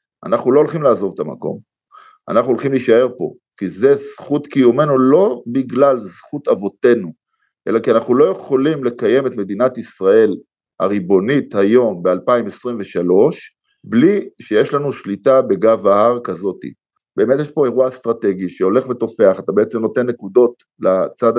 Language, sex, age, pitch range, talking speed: Hebrew, male, 50-69, 120-180 Hz, 135 wpm